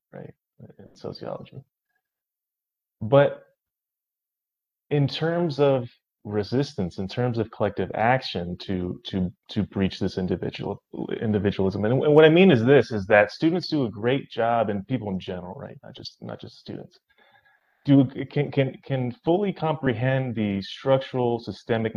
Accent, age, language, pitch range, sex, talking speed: American, 30-49, English, 95-130 Hz, male, 145 wpm